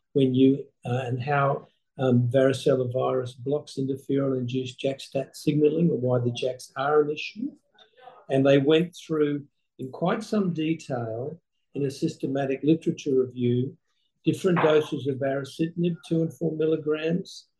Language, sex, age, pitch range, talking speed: English, male, 50-69, 130-160 Hz, 140 wpm